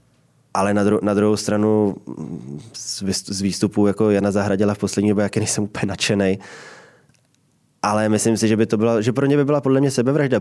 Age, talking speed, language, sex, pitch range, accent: 20-39, 200 wpm, Czech, male, 100-110 Hz, native